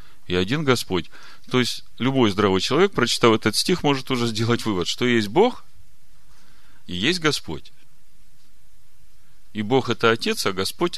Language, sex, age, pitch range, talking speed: Russian, male, 40-59, 85-110 Hz, 150 wpm